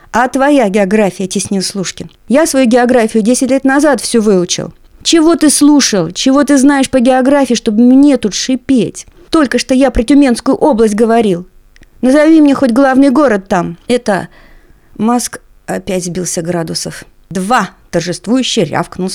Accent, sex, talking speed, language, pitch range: native, female, 145 wpm, Russian, 185-255 Hz